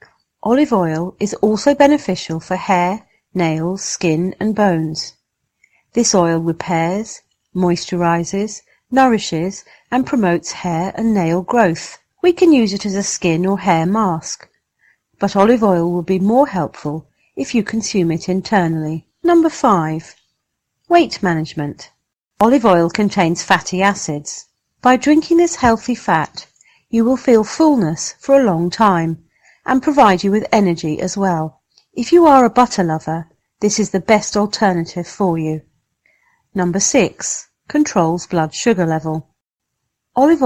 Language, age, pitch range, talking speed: English, 40-59, 165-230 Hz, 140 wpm